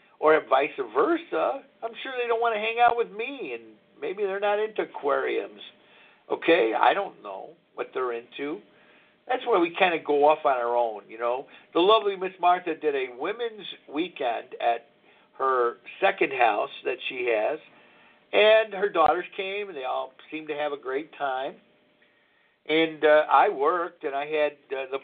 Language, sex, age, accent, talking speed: English, male, 50-69, American, 180 wpm